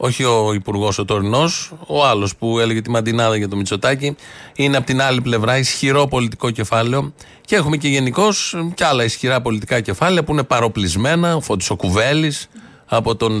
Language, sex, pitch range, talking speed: Greek, male, 115-145 Hz, 165 wpm